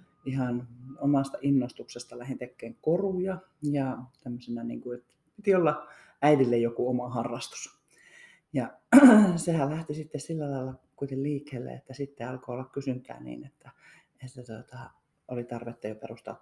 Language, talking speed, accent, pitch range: Finnish, 130 wpm, native, 120-150 Hz